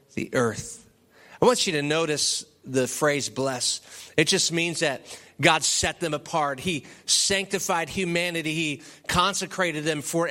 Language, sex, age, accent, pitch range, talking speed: English, male, 30-49, American, 170-215 Hz, 145 wpm